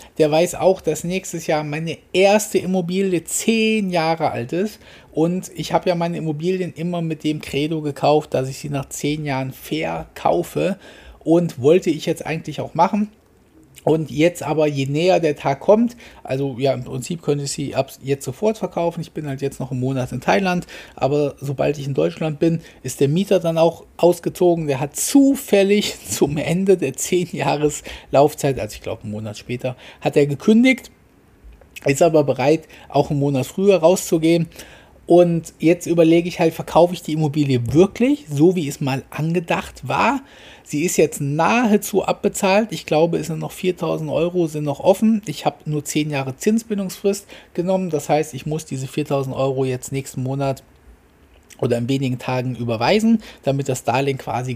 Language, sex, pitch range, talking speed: German, male, 140-180 Hz, 175 wpm